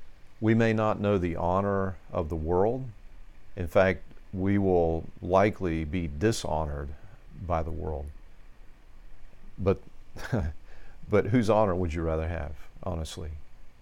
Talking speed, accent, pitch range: 120 wpm, American, 85-100 Hz